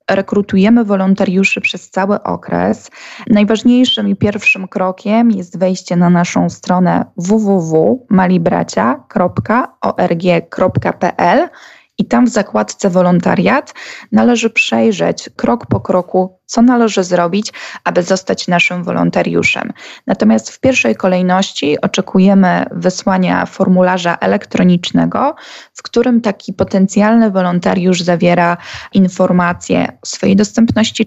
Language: Polish